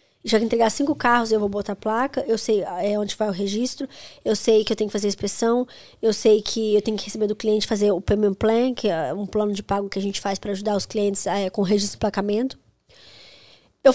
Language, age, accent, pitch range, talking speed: Portuguese, 20-39, Brazilian, 210-260 Hz, 250 wpm